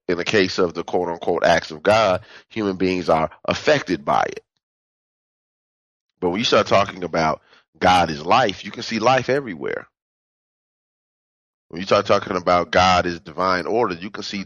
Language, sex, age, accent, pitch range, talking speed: English, male, 30-49, American, 95-115 Hz, 170 wpm